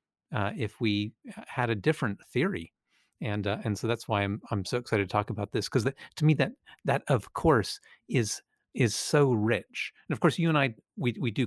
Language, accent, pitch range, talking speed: English, American, 105-145 Hz, 215 wpm